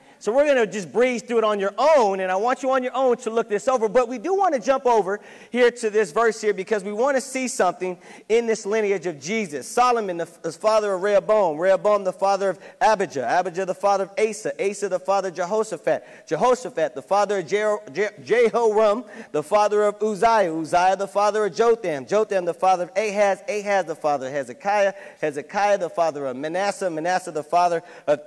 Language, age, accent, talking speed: English, 40-59, American, 210 wpm